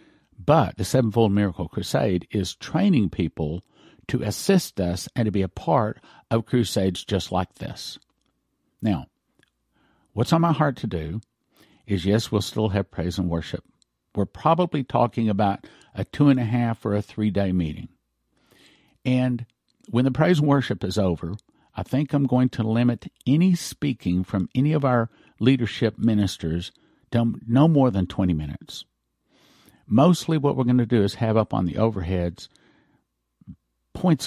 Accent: American